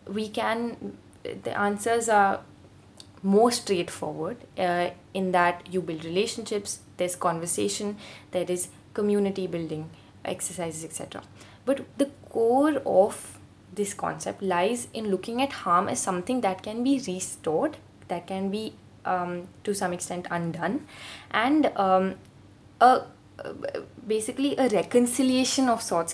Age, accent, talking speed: 20-39, Indian, 125 wpm